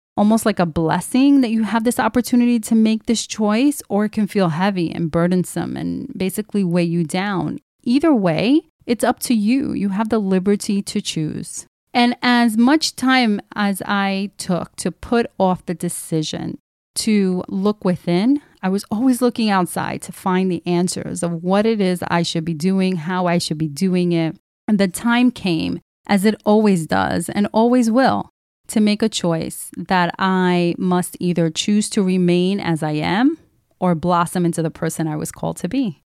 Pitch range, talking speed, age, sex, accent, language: 175-220 Hz, 185 wpm, 30-49, female, American, English